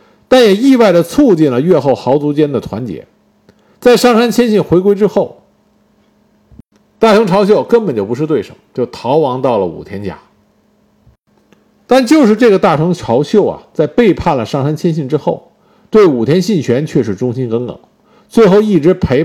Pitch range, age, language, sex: 135-220 Hz, 50-69, Chinese, male